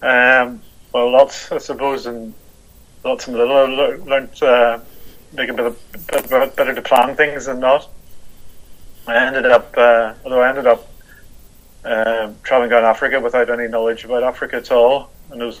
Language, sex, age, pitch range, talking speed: English, male, 30-49, 115-130 Hz, 160 wpm